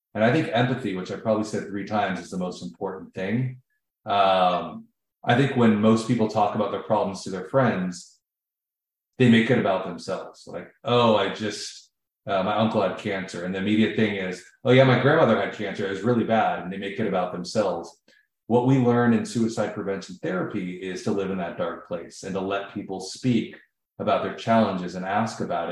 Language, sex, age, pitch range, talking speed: English, male, 30-49, 95-120 Hz, 205 wpm